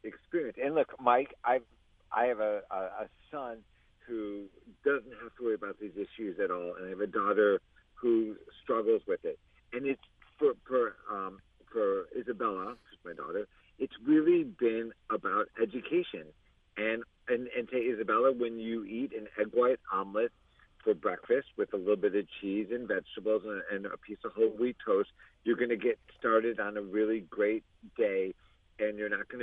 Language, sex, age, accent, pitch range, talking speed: English, male, 50-69, American, 105-170 Hz, 185 wpm